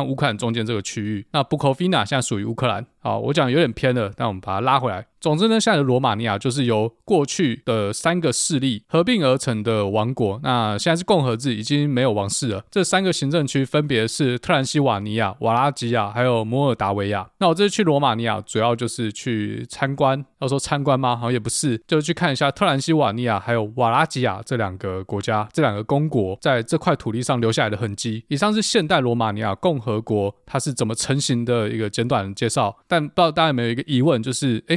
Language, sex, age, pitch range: Chinese, male, 20-39, 110-145 Hz